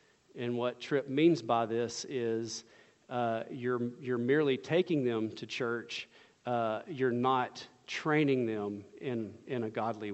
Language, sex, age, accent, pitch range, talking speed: English, male, 40-59, American, 120-140 Hz, 140 wpm